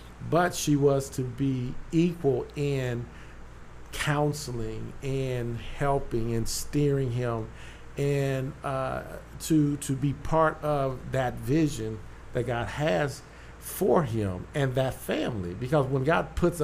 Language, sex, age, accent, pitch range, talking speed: English, male, 50-69, American, 120-150 Hz, 125 wpm